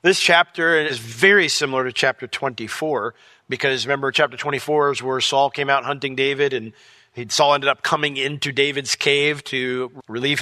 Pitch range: 125-150 Hz